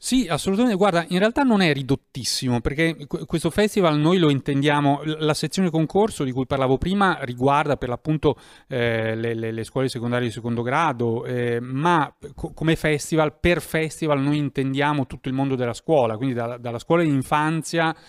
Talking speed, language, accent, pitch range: 175 wpm, Italian, native, 120-155 Hz